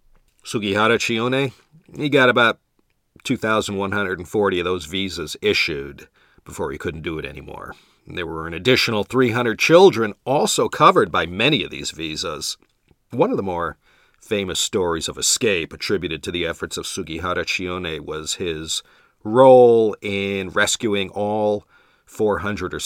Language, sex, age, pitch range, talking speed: English, male, 40-59, 85-120 Hz, 140 wpm